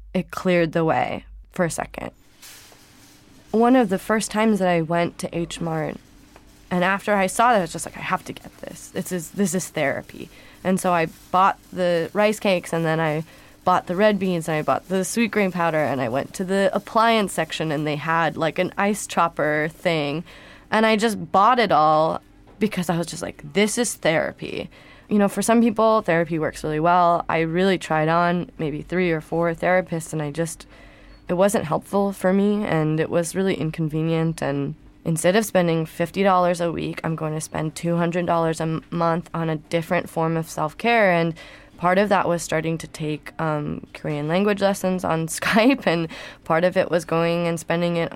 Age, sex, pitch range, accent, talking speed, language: 20-39, female, 160-190 Hz, American, 200 wpm, English